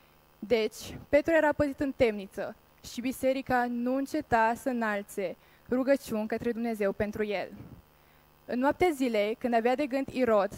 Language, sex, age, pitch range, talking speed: Romanian, female, 20-39, 210-260 Hz, 140 wpm